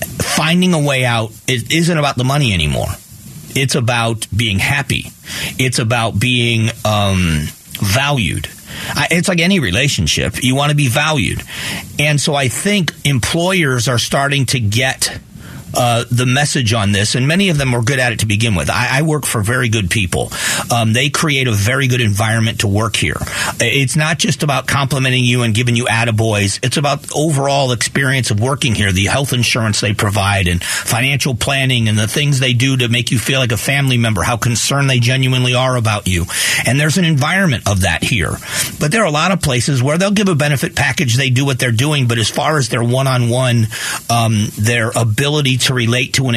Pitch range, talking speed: 115-140 Hz, 200 wpm